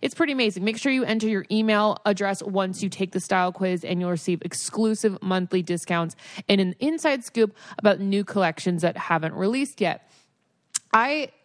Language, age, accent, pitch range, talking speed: English, 20-39, American, 175-215 Hz, 180 wpm